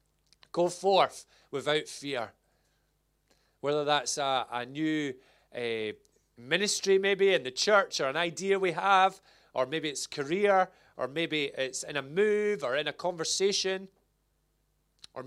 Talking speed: 140 wpm